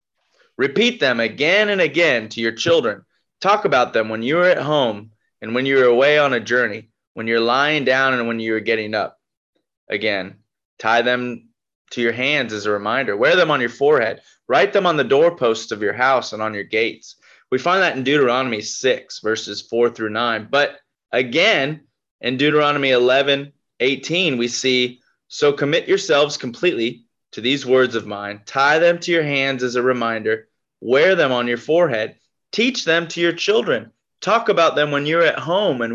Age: 20-39